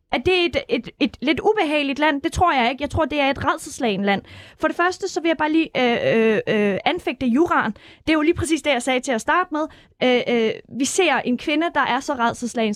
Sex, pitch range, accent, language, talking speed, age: female, 230-310 Hz, native, Danish, 255 wpm, 20-39